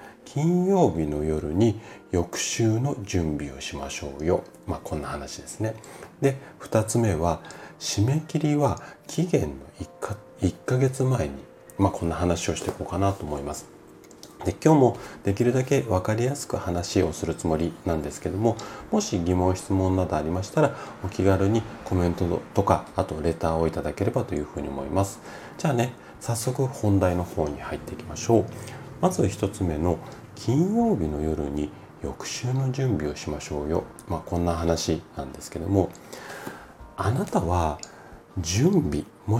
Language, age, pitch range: Japanese, 40-59, 80-125 Hz